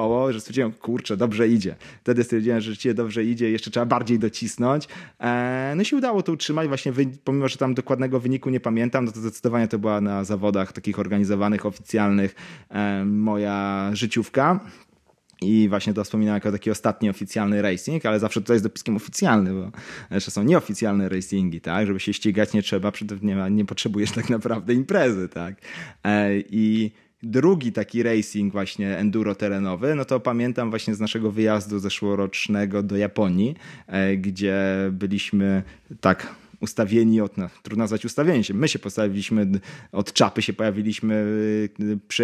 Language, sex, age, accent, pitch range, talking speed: Polish, male, 20-39, native, 100-120 Hz, 160 wpm